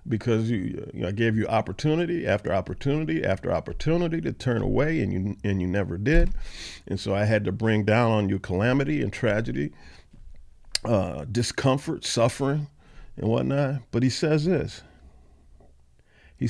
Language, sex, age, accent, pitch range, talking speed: English, male, 50-69, American, 95-130 Hz, 155 wpm